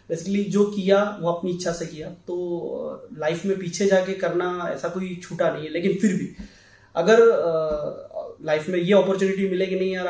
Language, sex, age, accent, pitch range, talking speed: Hindi, male, 20-39, native, 150-190 Hz, 190 wpm